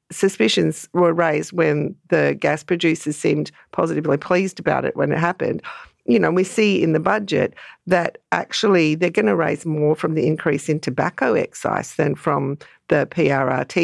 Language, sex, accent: English, female, Australian